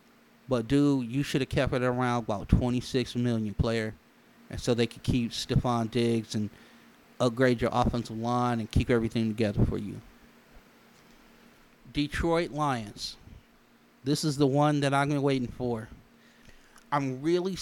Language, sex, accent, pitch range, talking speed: English, male, American, 120-145 Hz, 145 wpm